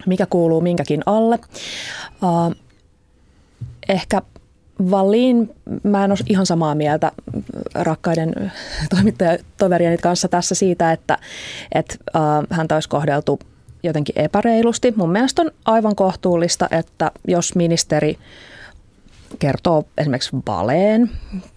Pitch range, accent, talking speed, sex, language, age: 160-220 Hz, native, 105 wpm, female, Finnish, 20-39